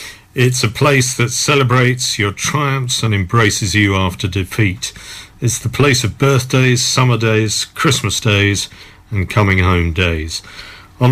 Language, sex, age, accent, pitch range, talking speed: English, male, 50-69, British, 100-130 Hz, 140 wpm